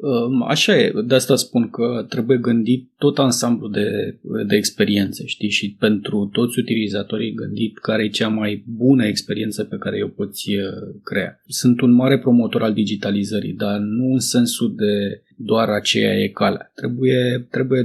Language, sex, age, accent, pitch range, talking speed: Romanian, male, 20-39, native, 115-150 Hz, 160 wpm